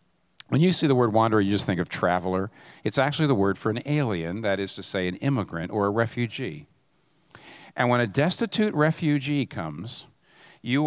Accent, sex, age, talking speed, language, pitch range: American, male, 50-69, 190 wpm, English, 110-155 Hz